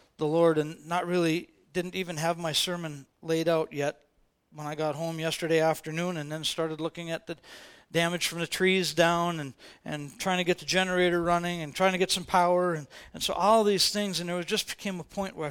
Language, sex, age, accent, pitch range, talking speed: English, male, 40-59, American, 150-180 Hz, 220 wpm